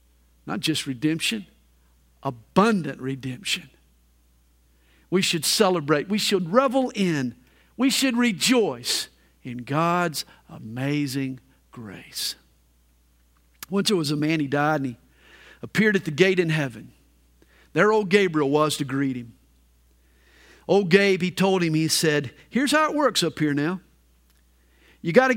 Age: 50-69